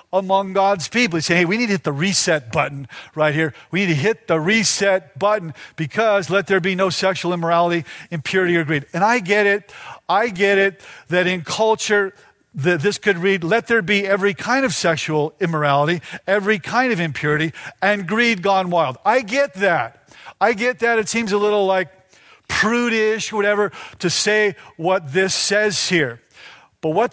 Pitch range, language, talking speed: 175-225 Hz, English, 180 wpm